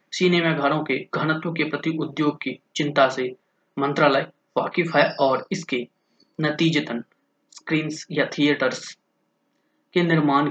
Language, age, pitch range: Hindi, 20-39, 140-165 Hz